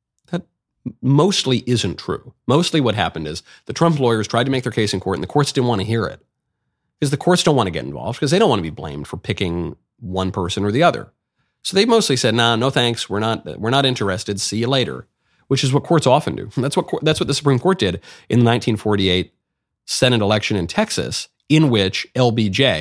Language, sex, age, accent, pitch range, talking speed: English, male, 30-49, American, 100-135 Hz, 225 wpm